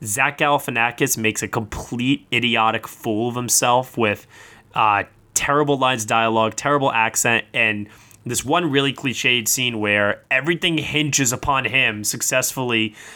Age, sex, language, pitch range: 20-39, male, English, 120-170 Hz